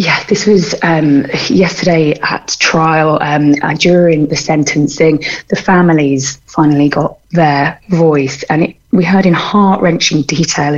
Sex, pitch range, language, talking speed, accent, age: female, 150-180 Hz, English, 145 wpm, British, 30-49